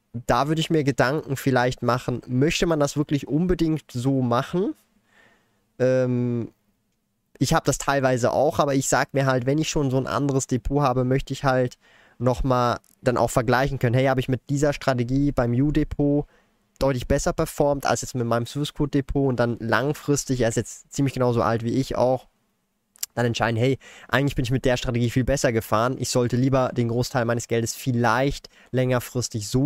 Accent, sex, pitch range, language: German, male, 120-140 Hz, German